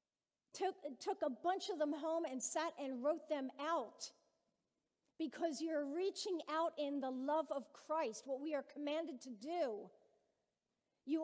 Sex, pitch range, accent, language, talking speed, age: female, 245-320 Hz, American, English, 155 wpm, 50-69